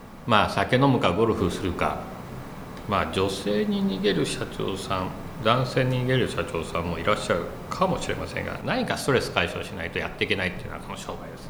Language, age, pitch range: Japanese, 60-79, 100-150 Hz